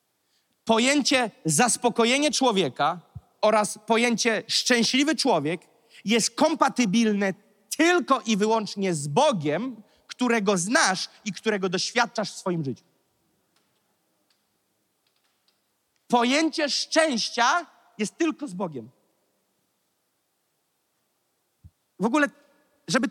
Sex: male